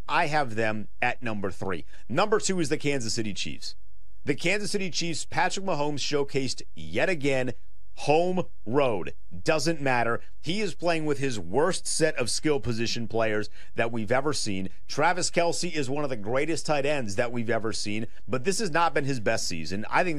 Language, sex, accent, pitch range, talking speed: English, male, American, 105-150 Hz, 190 wpm